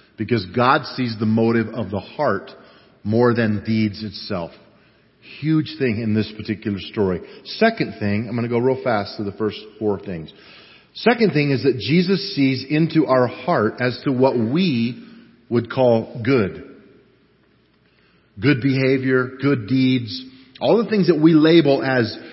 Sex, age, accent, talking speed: male, 40-59, American, 155 wpm